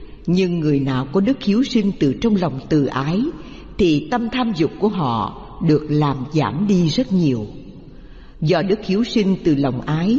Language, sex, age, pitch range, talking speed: Vietnamese, female, 60-79, 145-225 Hz, 185 wpm